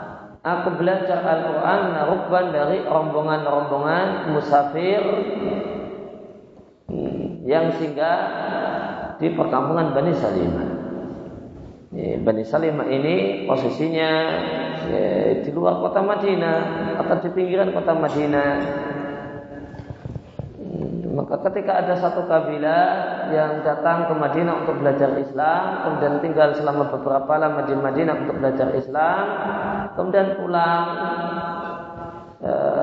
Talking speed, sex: 90 wpm, male